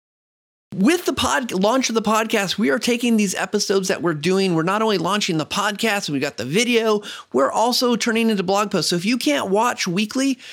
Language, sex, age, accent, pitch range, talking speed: English, male, 30-49, American, 145-200 Hz, 210 wpm